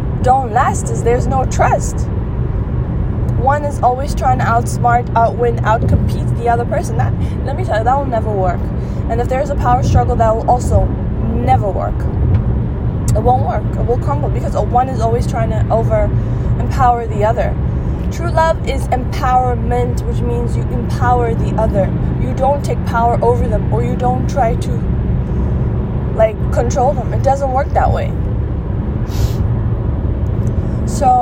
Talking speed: 160 wpm